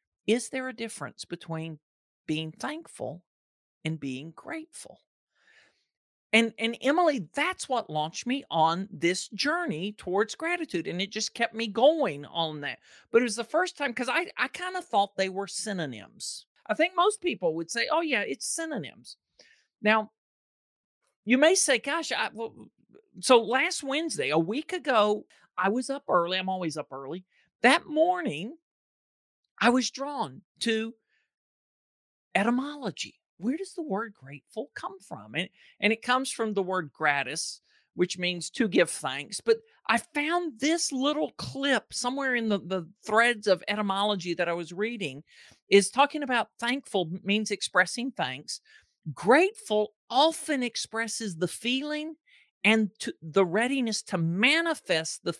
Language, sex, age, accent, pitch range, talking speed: English, male, 40-59, American, 180-280 Hz, 150 wpm